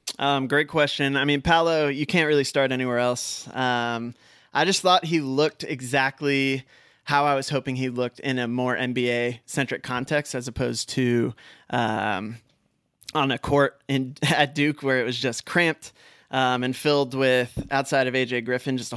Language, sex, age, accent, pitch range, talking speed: English, male, 20-39, American, 125-145 Hz, 175 wpm